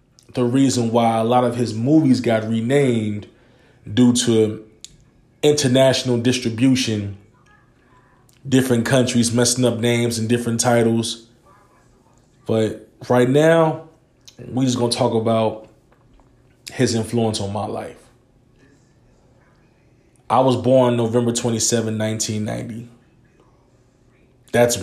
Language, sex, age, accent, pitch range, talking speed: English, male, 20-39, American, 115-135 Hz, 105 wpm